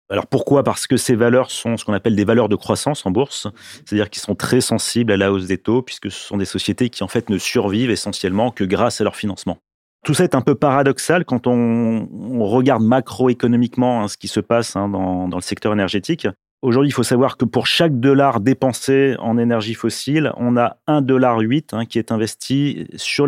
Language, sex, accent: French, male, French